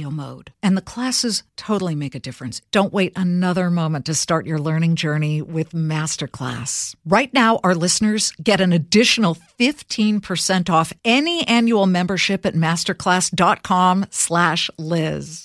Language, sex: English, female